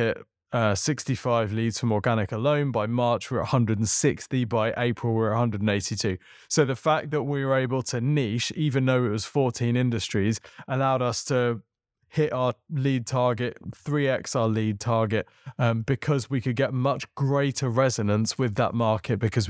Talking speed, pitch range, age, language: 160 wpm, 115-135 Hz, 20-39, English